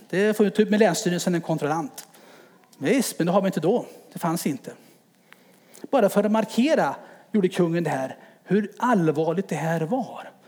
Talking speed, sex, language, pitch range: 170 wpm, male, English, 185-250 Hz